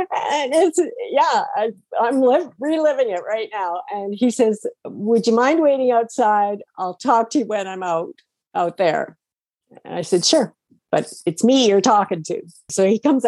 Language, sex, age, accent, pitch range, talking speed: English, female, 50-69, American, 165-225 Hz, 175 wpm